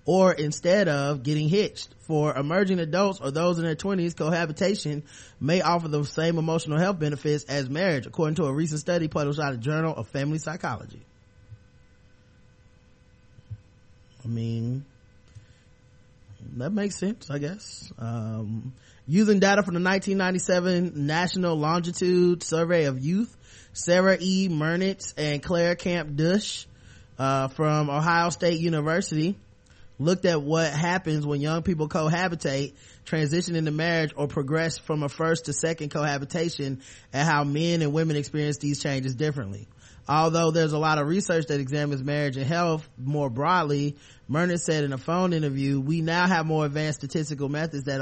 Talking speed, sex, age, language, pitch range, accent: 150 wpm, male, 20-39, English, 135-170 Hz, American